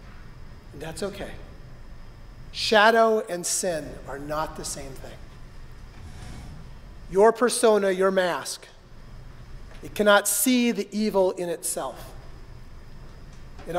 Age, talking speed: 40-59, 95 wpm